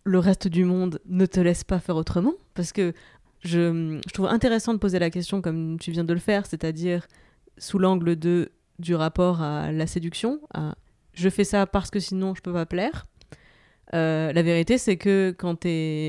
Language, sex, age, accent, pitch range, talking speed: French, female, 20-39, French, 170-200 Hz, 200 wpm